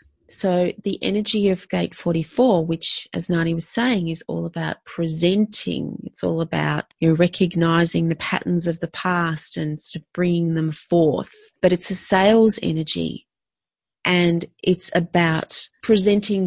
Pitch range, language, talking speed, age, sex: 165-200 Hz, English, 150 wpm, 30-49, female